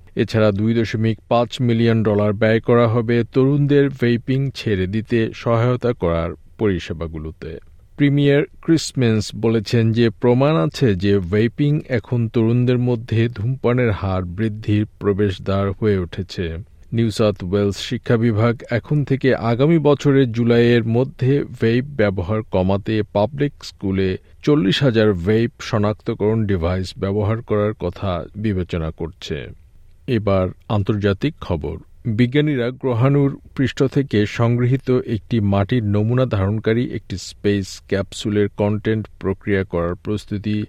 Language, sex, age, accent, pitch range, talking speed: Bengali, male, 50-69, native, 95-120 Hz, 115 wpm